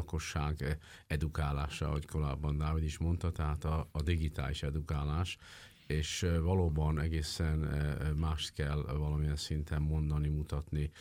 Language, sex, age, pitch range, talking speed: Hungarian, male, 50-69, 75-85 Hz, 115 wpm